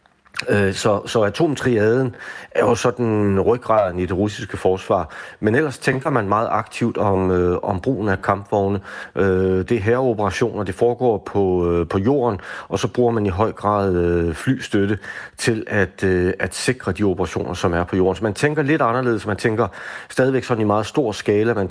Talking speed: 185 wpm